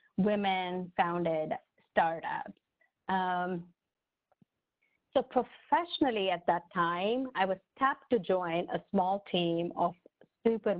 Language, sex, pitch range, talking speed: English, female, 170-215 Hz, 100 wpm